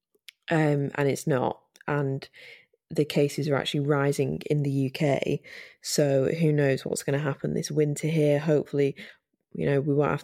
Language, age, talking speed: English, 20-39, 170 wpm